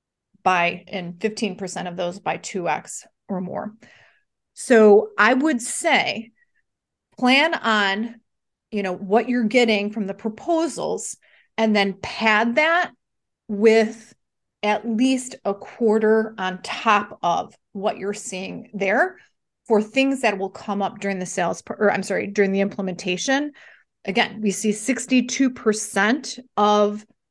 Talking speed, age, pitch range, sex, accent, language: 125 wpm, 30-49, 200-240 Hz, female, American, English